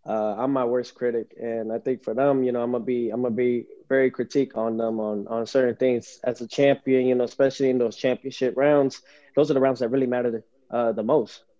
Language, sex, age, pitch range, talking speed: English, male, 20-39, 120-135 Hz, 245 wpm